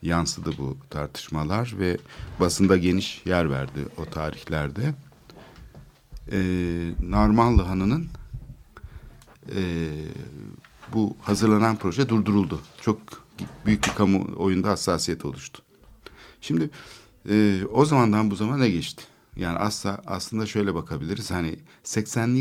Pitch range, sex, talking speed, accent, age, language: 85-110 Hz, male, 105 wpm, native, 60-79, Turkish